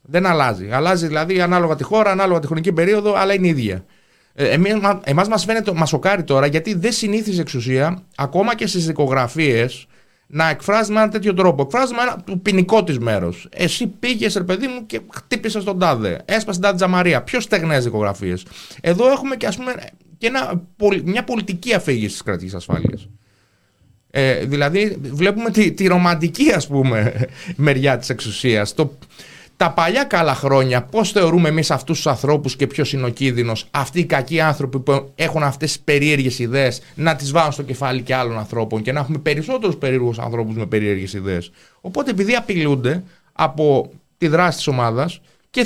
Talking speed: 170 wpm